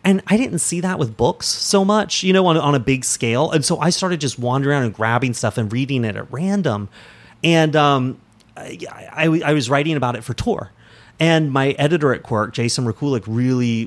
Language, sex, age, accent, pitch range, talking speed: English, male, 30-49, American, 115-155 Hz, 215 wpm